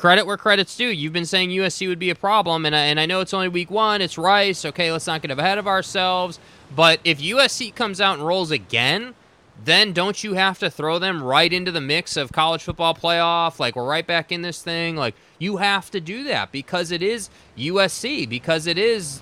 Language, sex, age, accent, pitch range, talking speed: English, male, 20-39, American, 155-200 Hz, 230 wpm